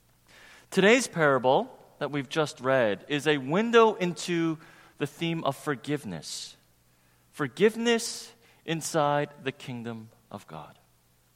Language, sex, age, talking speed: English, male, 30-49, 105 wpm